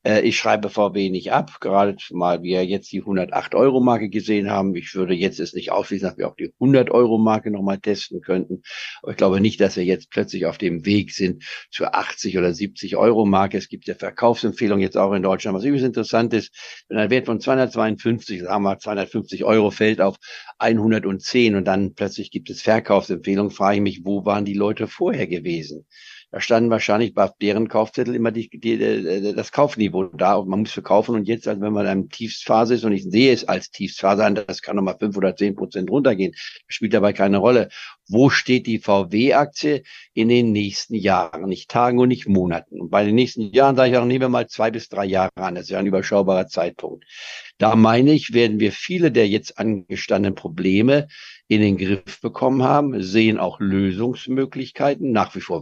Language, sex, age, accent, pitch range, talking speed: German, male, 50-69, German, 95-115 Hz, 200 wpm